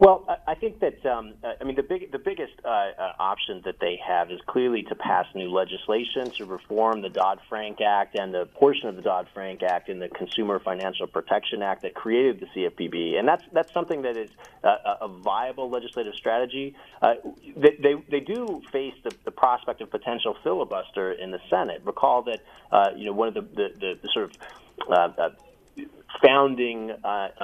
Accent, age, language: American, 30-49, English